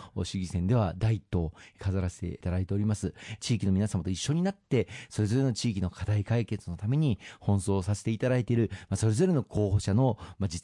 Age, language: 40-59, Japanese